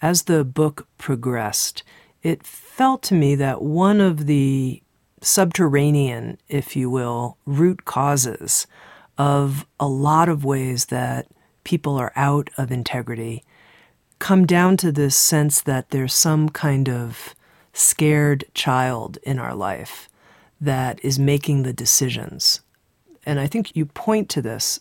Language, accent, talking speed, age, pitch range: English, American, 135 wpm, 50-69, 130-160 Hz